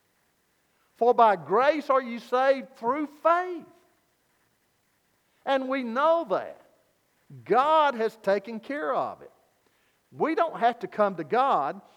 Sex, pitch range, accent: male, 205-270 Hz, American